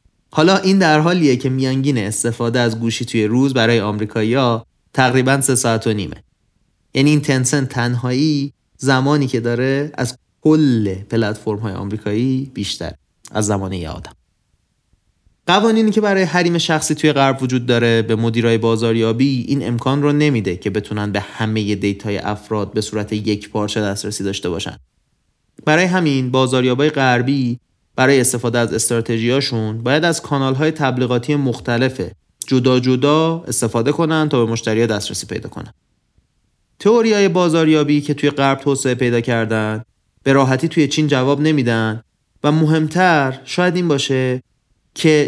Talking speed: 140 wpm